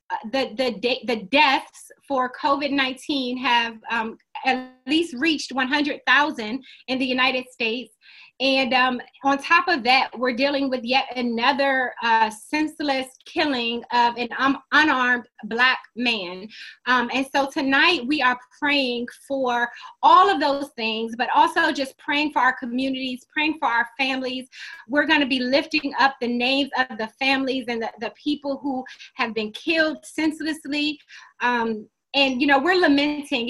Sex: female